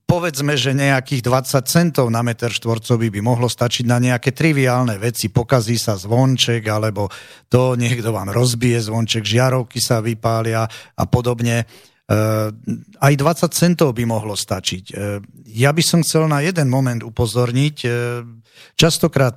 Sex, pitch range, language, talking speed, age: male, 115-135 Hz, Slovak, 135 wpm, 40-59